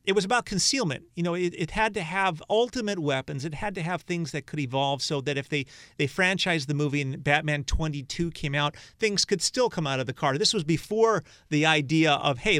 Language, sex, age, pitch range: English, male, 40-59, 130-170 Hz